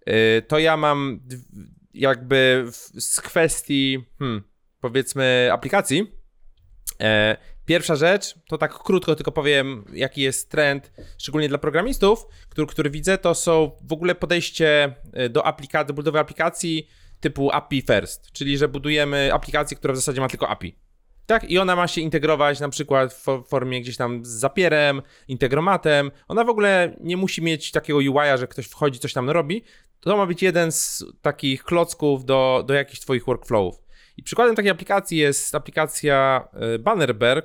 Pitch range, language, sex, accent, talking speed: 125-165 Hz, Polish, male, native, 155 wpm